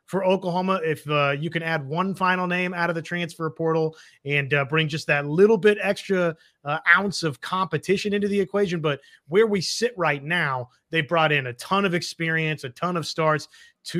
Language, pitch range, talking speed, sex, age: English, 155-195 Hz, 205 wpm, male, 30-49